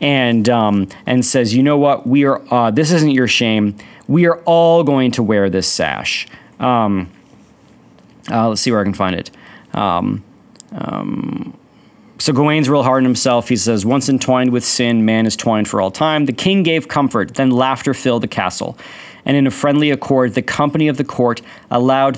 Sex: male